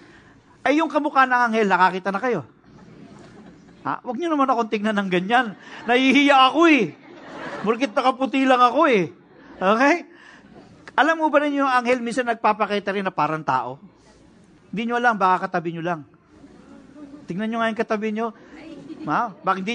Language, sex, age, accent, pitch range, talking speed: English, male, 50-69, Filipino, 200-270 Hz, 155 wpm